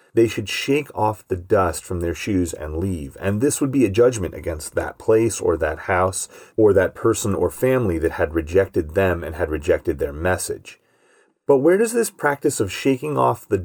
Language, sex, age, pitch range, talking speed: English, male, 30-49, 95-135 Hz, 200 wpm